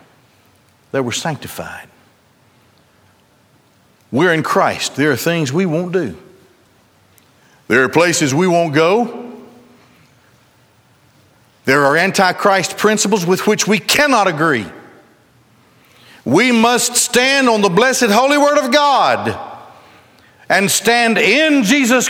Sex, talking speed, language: male, 110 wpm, English